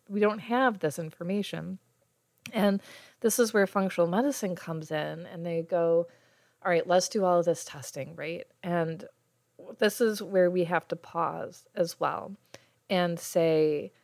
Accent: American